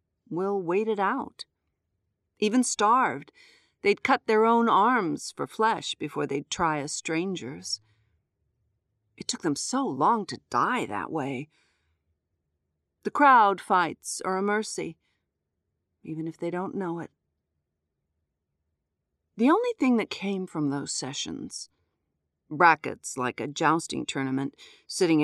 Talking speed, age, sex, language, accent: 125 wpm, 50-69, female, English, American